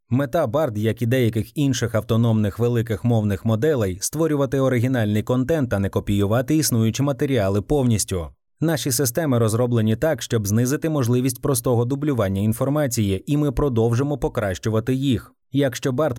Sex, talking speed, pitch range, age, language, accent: male, 135 wpm, 110-145 Hz, 20-39, Ukrainian, native